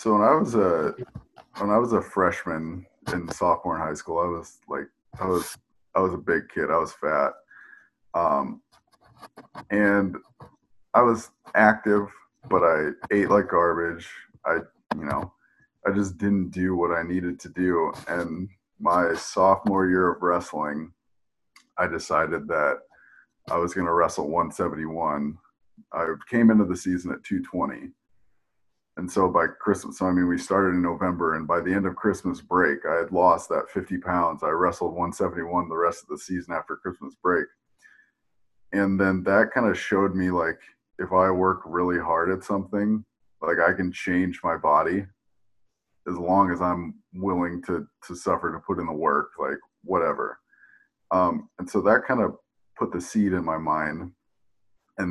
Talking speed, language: 175 wpm, English